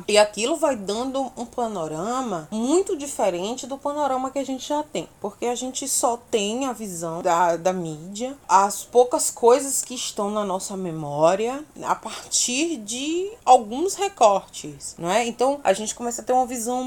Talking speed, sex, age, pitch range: 170 wpm, female, 20-39, 175-250 Hz